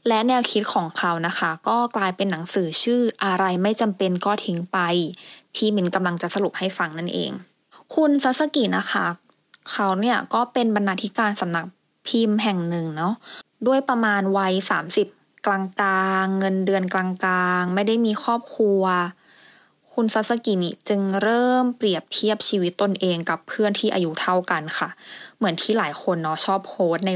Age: 20-39